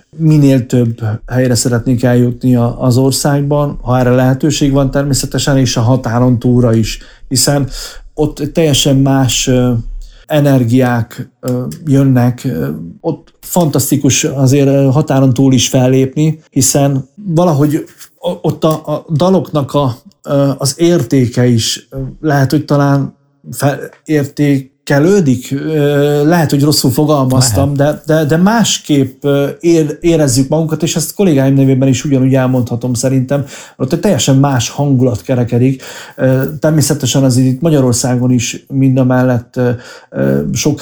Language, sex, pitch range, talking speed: Hungarian, male, 125-150 Hz, 120 wpm